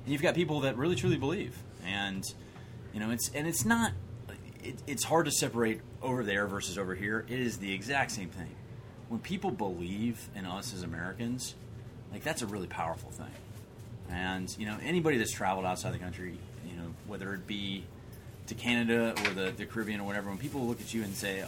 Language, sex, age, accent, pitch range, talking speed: English, male, 30-49, American, 100-120 Hz, 205 wpm